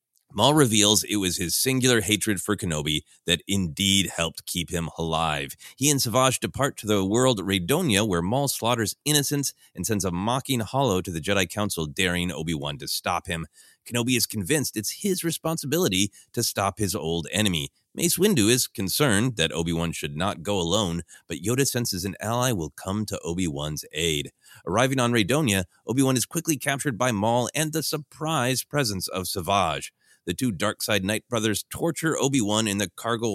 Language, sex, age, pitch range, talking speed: English, male, 30-49, 95-135 Hz, 175 wpm